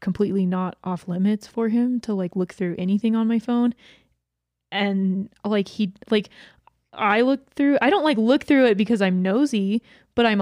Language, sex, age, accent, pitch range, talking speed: English, female, 20-39, American, 195-245 Hz, 185 wpm